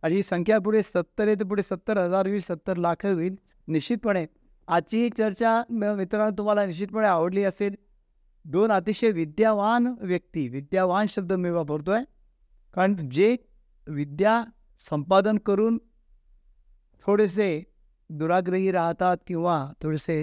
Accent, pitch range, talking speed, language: native, 150-200 Hz, 120 wpm, Marathi